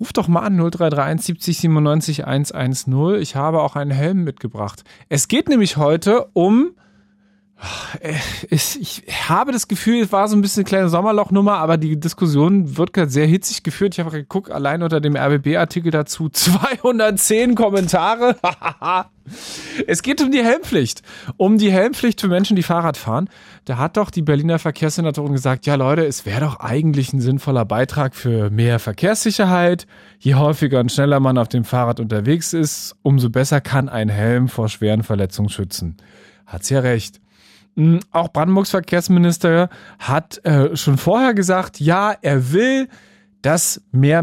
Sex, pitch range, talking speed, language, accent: male, 130-185 Hz, 160 wpm, German, German